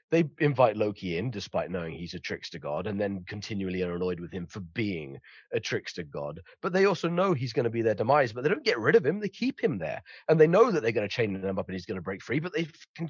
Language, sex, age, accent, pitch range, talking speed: English, male, 30-49, British, 110-180 Hz, 285 wpm